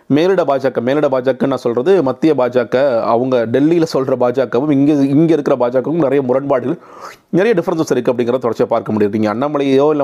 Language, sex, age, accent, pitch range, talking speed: Tamil, male, 30-49, native, 120-145 Hz, 155 wpm